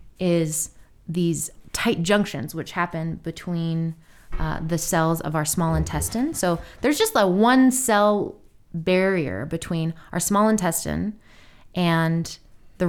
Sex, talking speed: female, 125 wpm